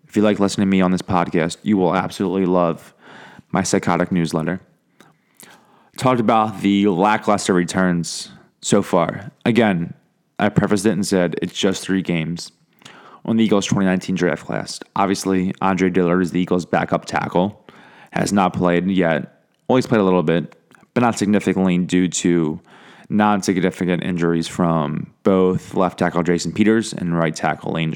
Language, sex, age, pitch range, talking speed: English, male, 20-39, 90-105 Hz, 155 wpm